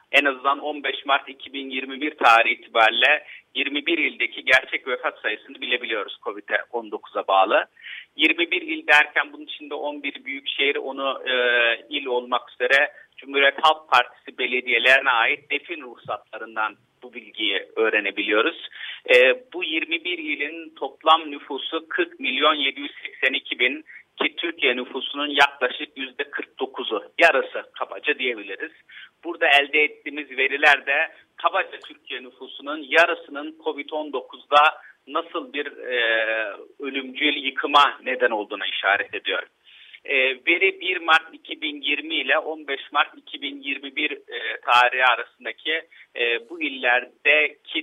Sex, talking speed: male, 110 wpm